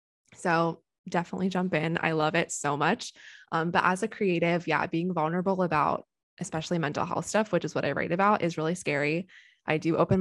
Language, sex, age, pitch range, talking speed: English, female, 20-39, 160-190 Hz, 200 wpm